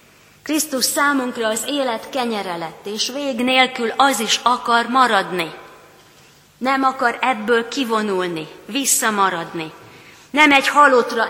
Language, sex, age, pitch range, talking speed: Hungarian, female, 30-49, 195-250 Hz, 110 wpm